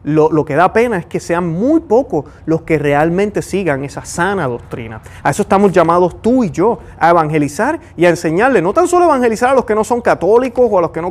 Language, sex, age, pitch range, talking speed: Spanish, male, 30-49, 145-210 Hz, 240 wpm